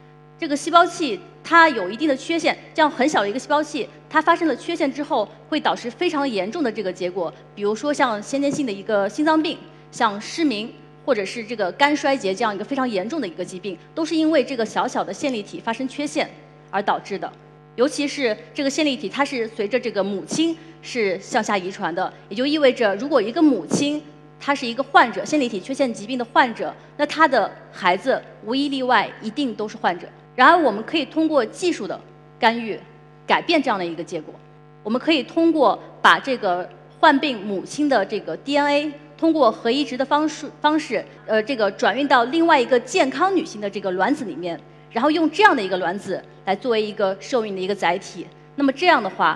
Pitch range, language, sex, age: 195-295 Hz, Chinese, female, 30-49